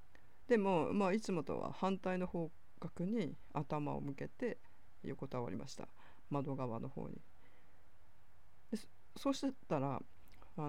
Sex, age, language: female, 50-69, Japanese